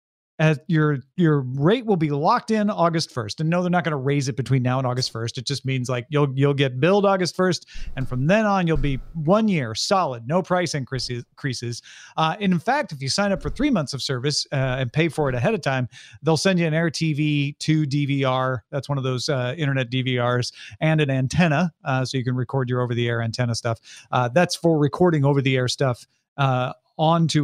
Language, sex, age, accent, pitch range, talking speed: English, male, 40-59, American, 130-175 Hz, 230 wpm